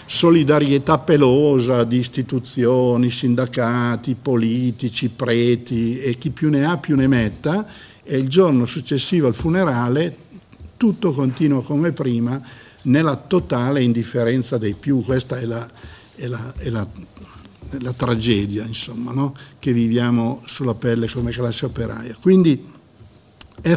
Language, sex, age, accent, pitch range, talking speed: Italian, male, 60-79, native, 120-145 Hz, 130 wpm